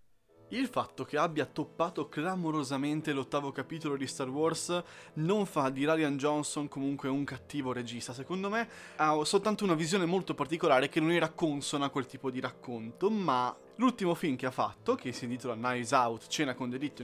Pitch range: 130-165 Hz